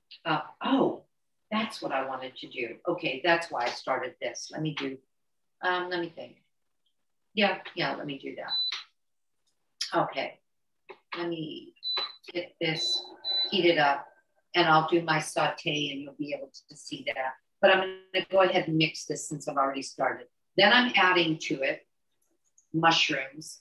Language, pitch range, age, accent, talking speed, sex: English, 155-185 Hz, 50-69, American, 170 wpm, female